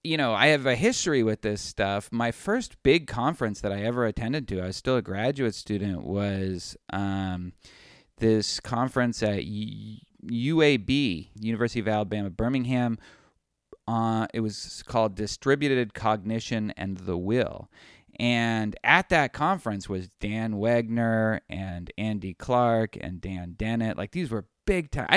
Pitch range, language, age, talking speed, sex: 100-120 Hz, English, 30-49, 145 wpm, male